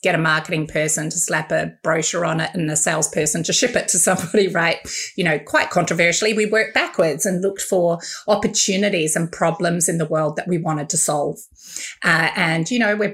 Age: 30-49